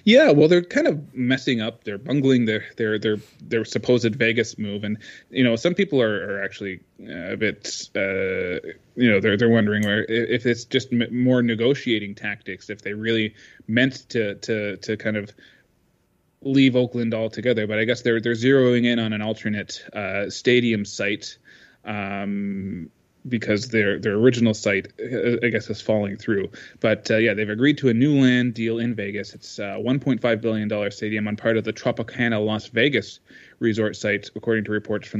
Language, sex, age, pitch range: English, male, 20-39, 105-125 Hz